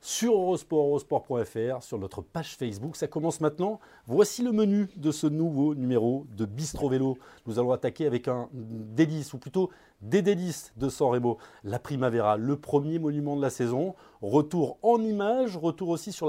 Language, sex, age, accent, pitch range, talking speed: French, male, 30-49, French, 120-185 Hz, 175 wpm